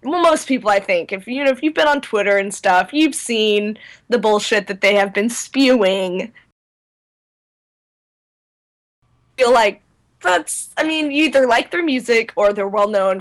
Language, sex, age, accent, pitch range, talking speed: English, female, 10-29, American, 195-245 Hz, 170 wpm